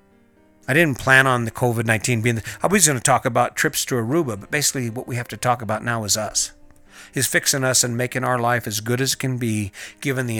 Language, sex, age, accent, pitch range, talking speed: English, male, 50-69, American, 110-130 Hz, 250 wpm